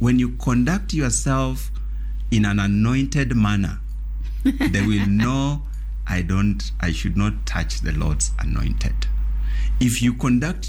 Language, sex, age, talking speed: English, male, 60-79, 130 wpm